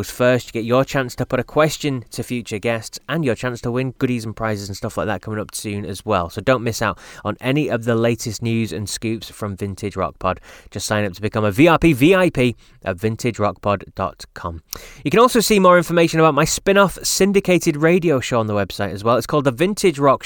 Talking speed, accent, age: 230 wpm, British, 20-39